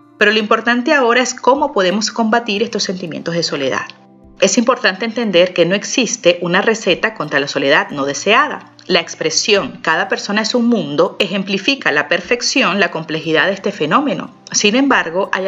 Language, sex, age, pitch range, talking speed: Spanish, female, 30-49, 170-235 Hz, 165 wpm